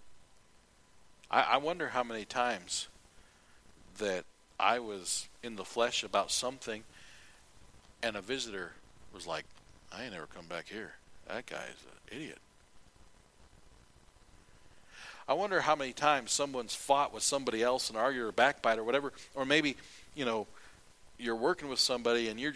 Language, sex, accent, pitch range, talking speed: English, male, American, 85-135 Hz, 145 wpm